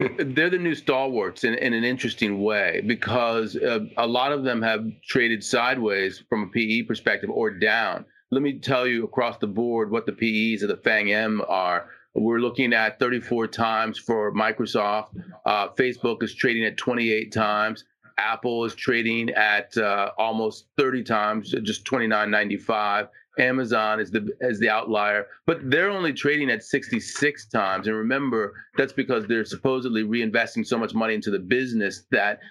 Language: English